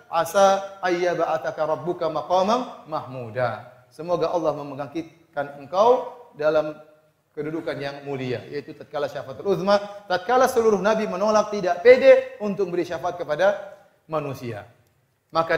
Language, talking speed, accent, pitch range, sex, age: Indonesian, 110 wpm, native, 155-235 Hz, male, 30-49